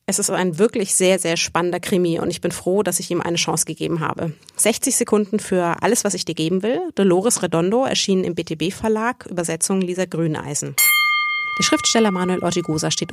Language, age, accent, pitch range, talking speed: German, 30-49, German, 160-205 Hz, 190 wpm